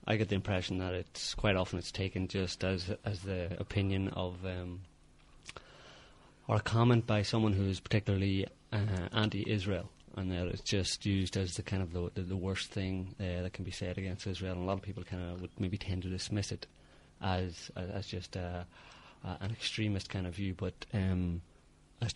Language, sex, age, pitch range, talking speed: English, male, 30-49, 85-95 Hz, 195 wpm